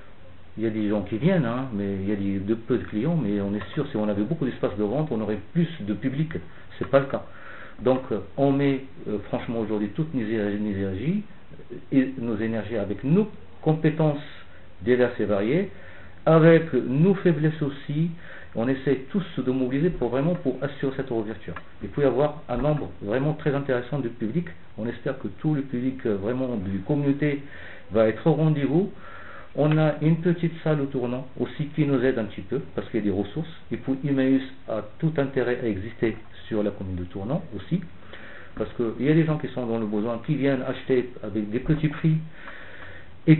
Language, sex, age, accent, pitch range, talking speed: English, male, 50-69, French, 105-150 Hz, 200 wpm